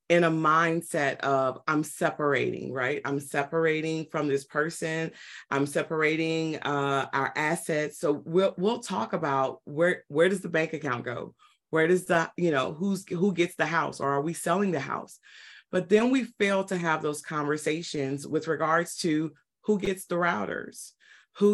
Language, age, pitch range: English, 30-49, 150-185 Hz